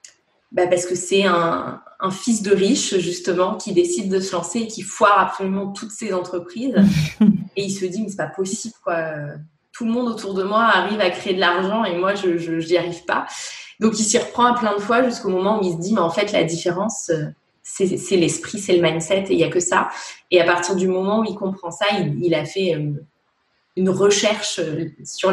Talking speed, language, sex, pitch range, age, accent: 225 wpm, French, female, 170-200 Hz, 20-39, French